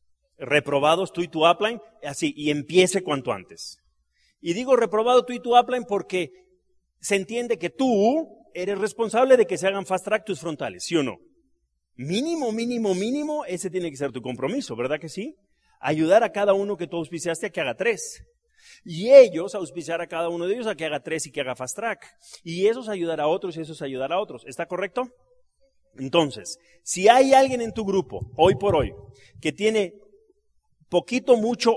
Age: 40-59